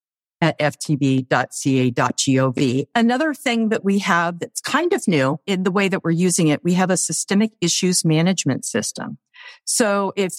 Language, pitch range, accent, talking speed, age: English, 150-195 Hz, American, 155 wpm, 50-69